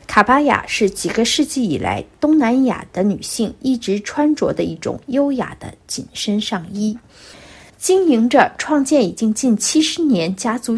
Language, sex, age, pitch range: Chinese, female, 50-69, 200-265 Hz